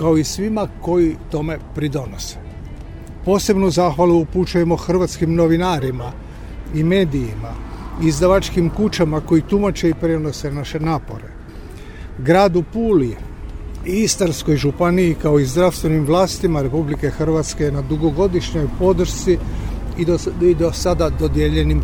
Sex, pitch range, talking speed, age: male, 140-180 Hz, 115 wpm, 50-69